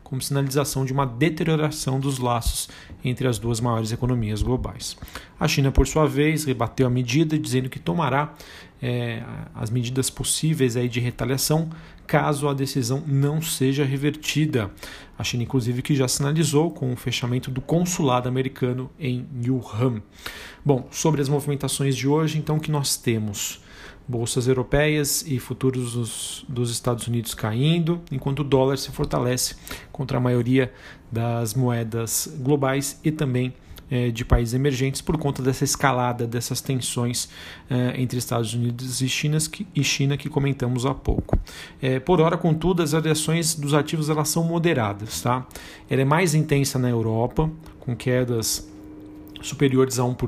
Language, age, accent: Portuguese, 40-59, Brazilian